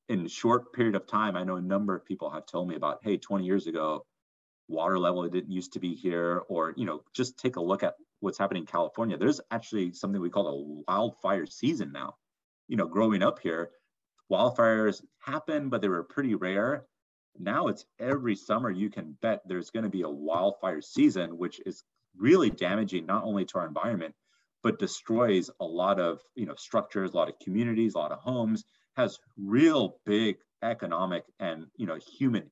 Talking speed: 200 wpm